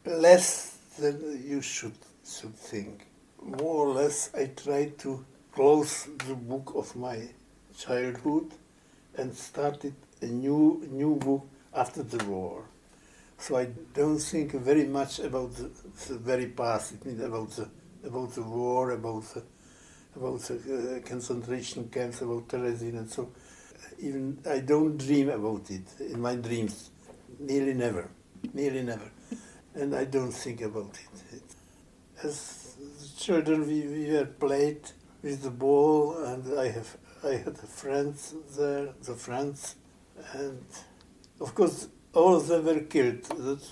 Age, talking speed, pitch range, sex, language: 60-79, 140 wpm, 120-145 Hz, male, English